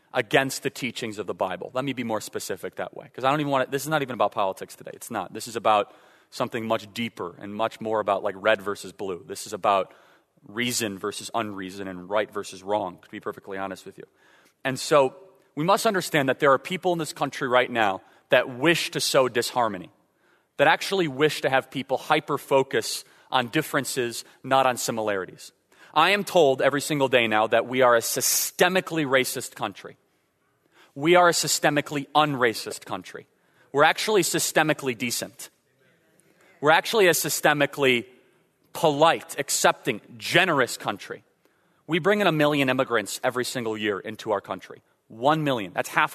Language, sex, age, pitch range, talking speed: English, male, 30-49, 120-155 Hz, 180 wpm